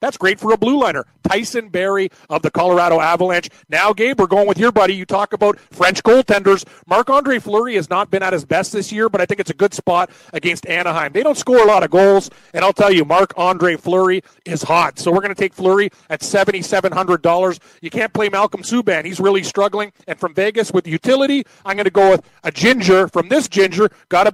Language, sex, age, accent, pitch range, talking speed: English, male, 40-59, American, 175-215 Hz, 225 wpm